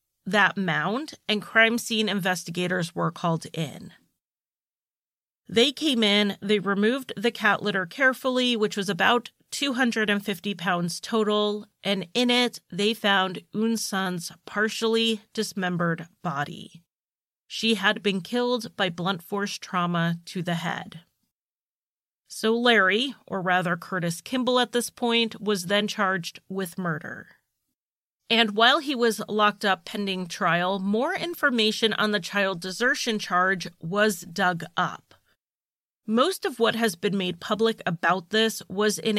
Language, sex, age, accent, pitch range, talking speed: English, female, 30-49, American, 185-225 Hz, 135 wpm